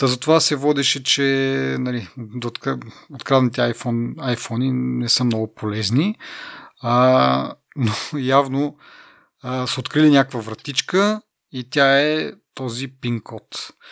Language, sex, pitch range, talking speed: Bulgarian, male, 115-145 Hz, 105 wpm